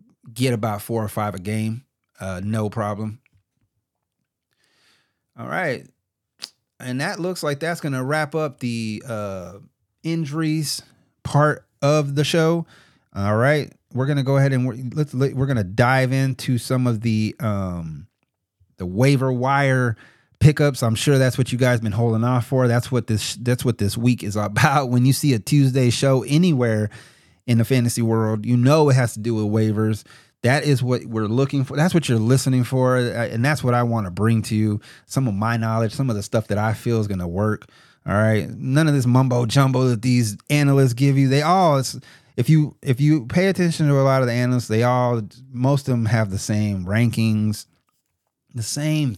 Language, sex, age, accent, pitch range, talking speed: English, male, 30-49, American, 110-140 Hz, 195 wpm